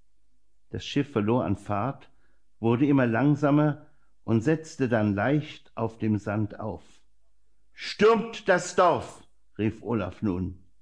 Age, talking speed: 60-79, 120 wpm